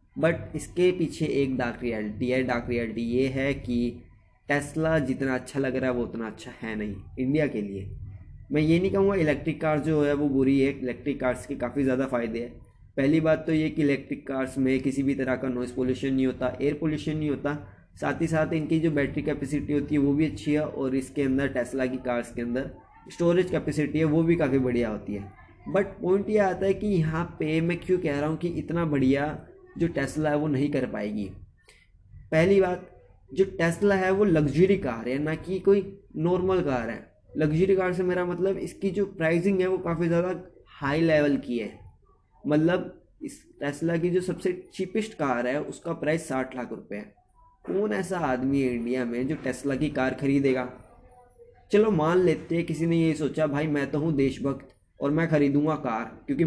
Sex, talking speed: male, 205 wpm